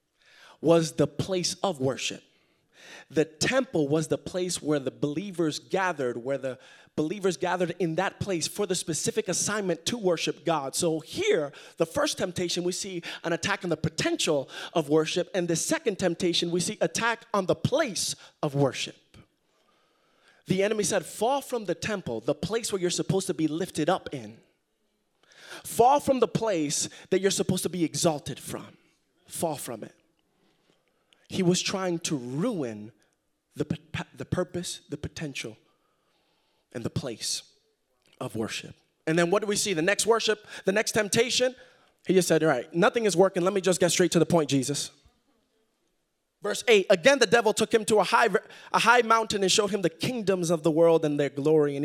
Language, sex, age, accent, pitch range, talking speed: English, male, 20-39, American, 155-210 Hz, 175 wpm